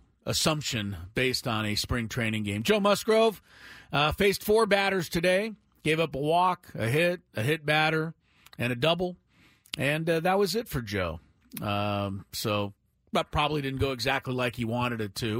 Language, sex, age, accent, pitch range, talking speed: English, male, 40-59, American, 115-175 Hz, 175 wpm